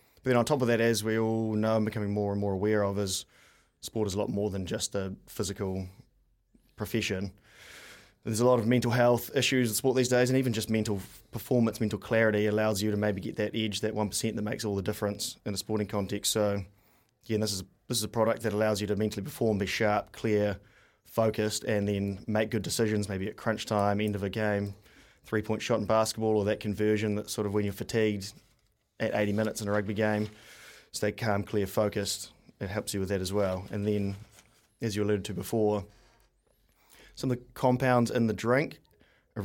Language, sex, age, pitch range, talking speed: English, male, 20-39, 105-115 Hz, 215 wpm